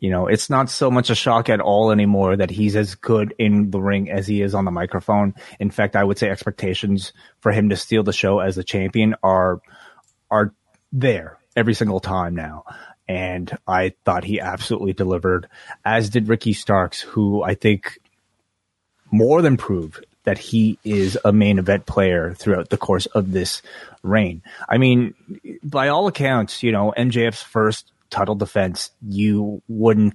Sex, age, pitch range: male, 30-49, 95-110 Hz